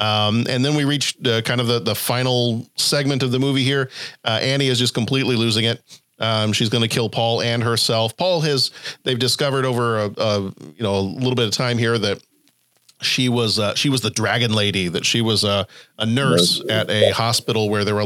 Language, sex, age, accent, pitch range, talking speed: English, male, 40-59, American, 105-130 Hz, 225 wpm